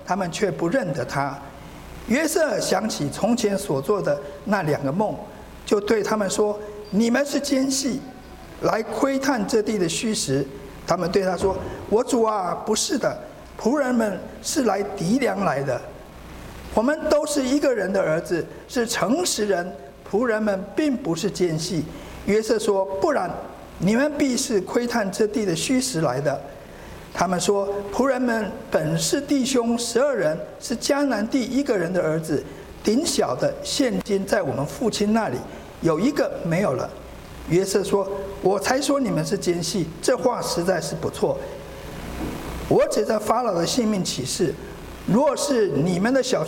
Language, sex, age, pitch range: Chinese, male, 50-69, 180-250 Hz